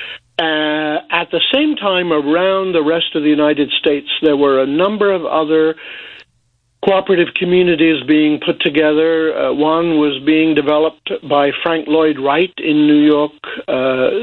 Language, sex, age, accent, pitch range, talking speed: English, male, 60-79, American, 135-160 Hz, 150 wpm